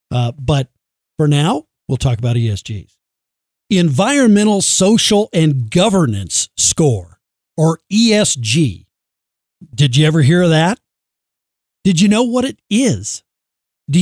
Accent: American